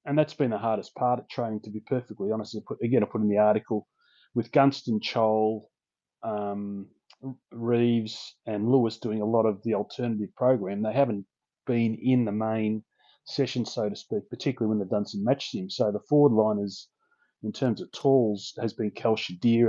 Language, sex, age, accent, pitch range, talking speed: English, male, 30-49, Australian, 105-125 Hz, 185 wpm